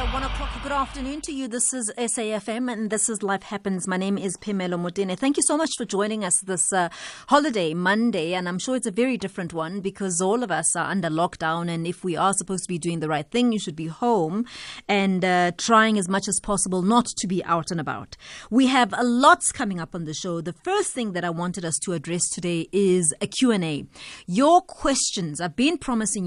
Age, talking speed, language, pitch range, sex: 30-49, 235 wpm, English, 180-245 Hz, female